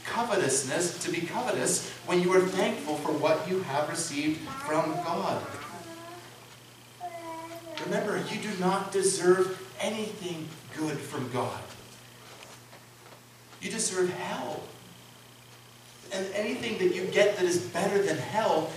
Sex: male